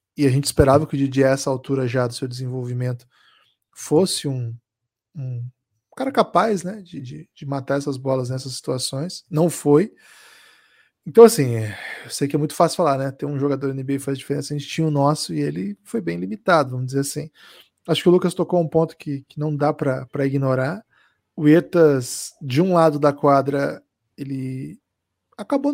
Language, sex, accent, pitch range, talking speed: Portuguese, male, Brazilian, 140-180 Hz, 190 wpm